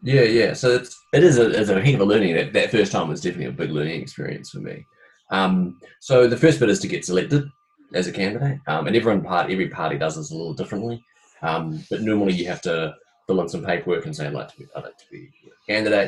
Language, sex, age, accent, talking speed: English, male, 30-49, Australian, 260 wpm